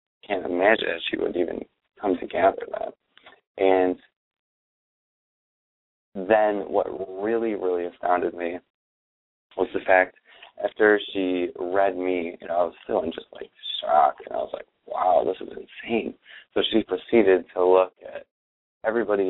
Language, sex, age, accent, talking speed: English, male, 20-39, American, 150 wpm